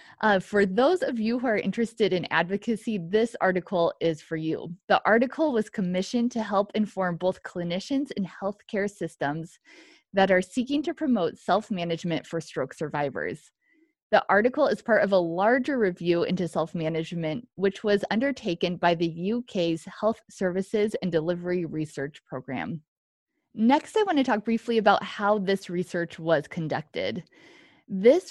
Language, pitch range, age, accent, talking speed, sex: English, 175-240 Hz, 20-39, American, 150 wpm, female